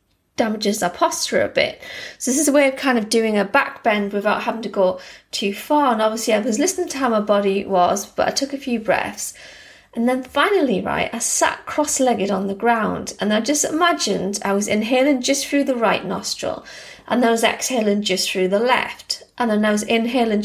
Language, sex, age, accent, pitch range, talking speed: English, female, 30-49, British, 205-275 Hz, 220 wpm